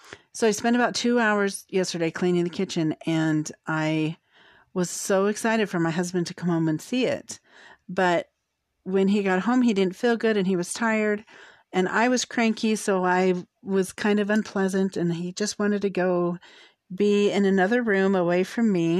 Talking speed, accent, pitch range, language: 190 wpm, American, 175-225 Hz, English